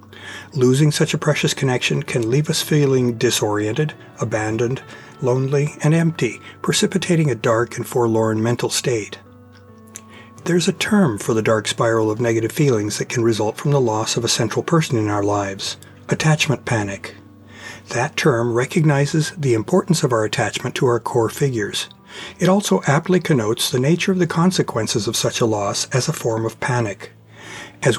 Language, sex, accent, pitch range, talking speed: English, male, American, 110-155 Hz, 165 wpm